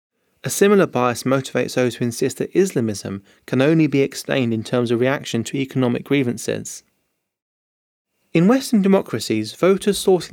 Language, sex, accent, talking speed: English, male, British, 145 wpm